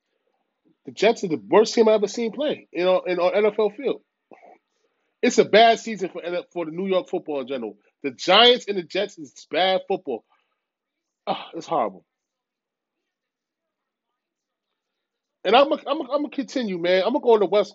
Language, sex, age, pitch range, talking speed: English, male, 30-49, 210-290 Hz, 175 wpm